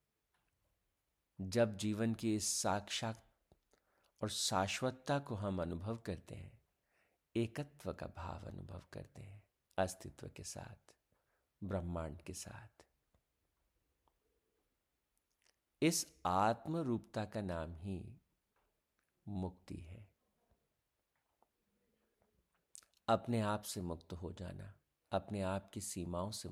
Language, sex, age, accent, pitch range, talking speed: Hindi, male, 50-69, native, 85-105 Hz, 95 wpm